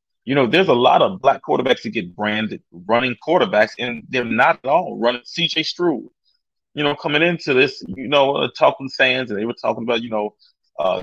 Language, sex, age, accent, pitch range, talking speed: English, male, 30-49, American, 105-160 Hz, 205 wpm